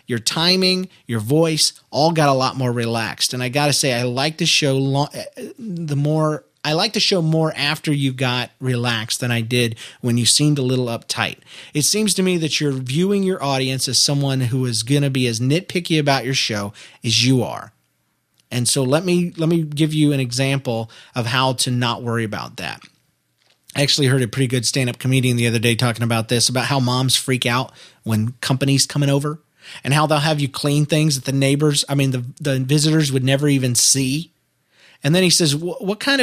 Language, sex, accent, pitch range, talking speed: English, male, American, 125-165 Hz, 215 wpm